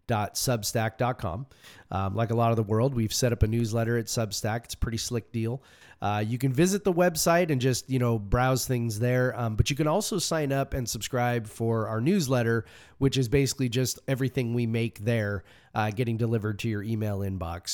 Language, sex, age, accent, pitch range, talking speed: English, male, 30-49, American, 110-130 Hz, 205 wpm